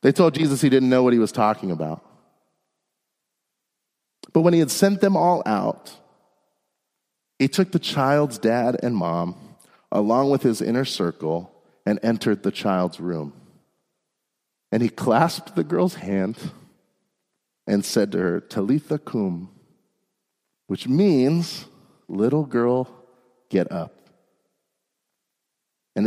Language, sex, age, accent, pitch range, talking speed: English, male, 40-59, American, 95-135 Hz, 125 wpm